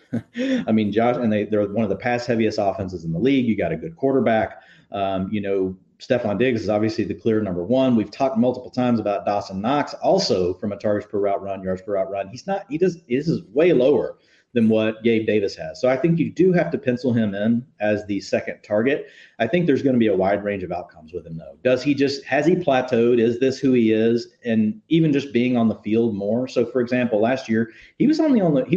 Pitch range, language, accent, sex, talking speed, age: 105-130 Hz, English, American, male, 245 wpm, 40-59